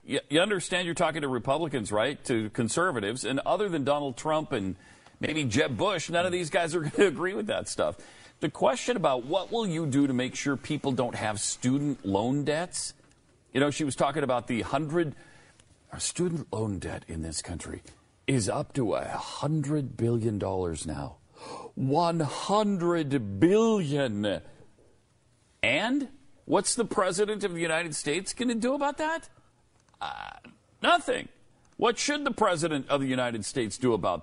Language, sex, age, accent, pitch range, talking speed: English, male, 40-59, American, 120-170 Hz, 170 wpm